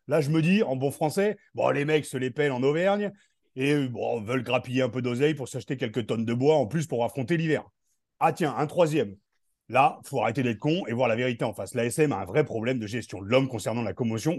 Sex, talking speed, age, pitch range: male, 255 wpm, 40-59, 125-165 Hz